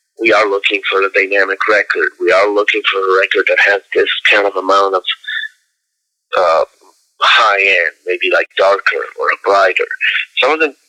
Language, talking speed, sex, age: English, 170 wpm, male, 30-49